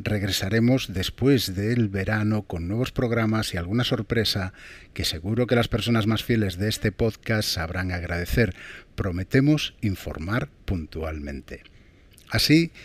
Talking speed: 120 wpm